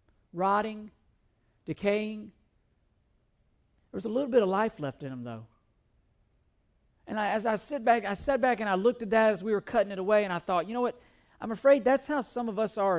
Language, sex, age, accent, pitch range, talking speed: English, male, 50-69, American, 180-245 Hz, 205 wpm